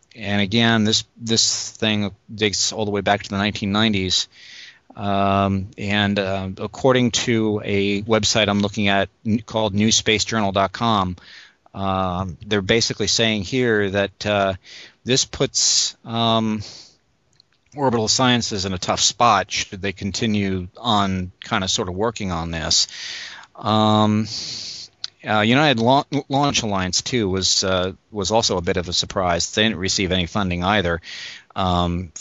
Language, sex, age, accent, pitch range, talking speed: English, male, 40-59, American, 95-110 Hz, 140 wpm